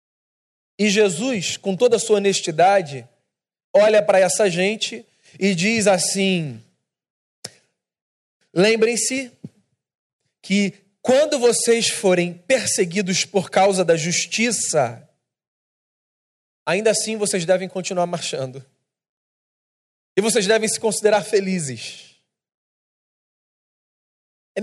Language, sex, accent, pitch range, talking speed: Portuguese, male, Brazilian, 165-225 Hz, 90 wpm